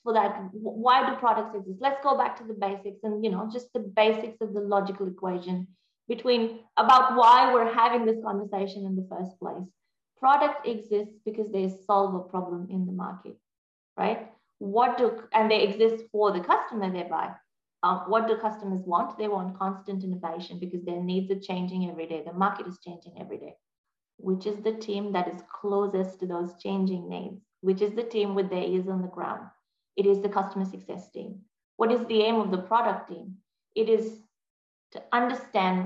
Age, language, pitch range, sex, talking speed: 20-39, English, 190-230 Hz, female, 190 wpm